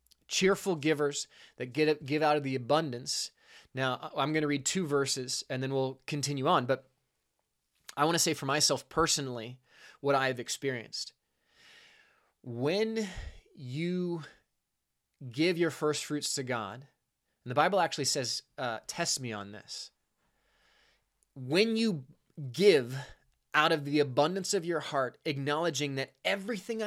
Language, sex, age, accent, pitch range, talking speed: English, male, 20-39, American, 135-180 Hz, 140 wpm